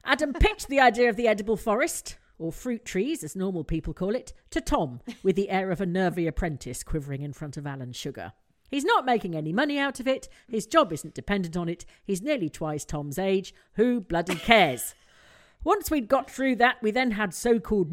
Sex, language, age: female, English, 40-59